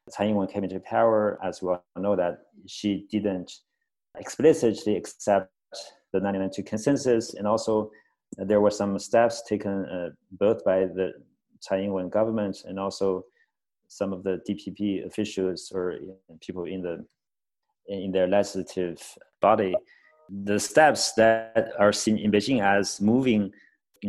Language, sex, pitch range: English, male, 95-110 Hz